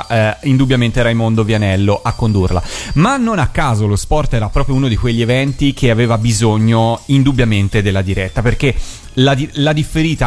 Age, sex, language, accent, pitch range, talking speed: 30-49, male, Italian, native, 110-140 Hz, 170 wpm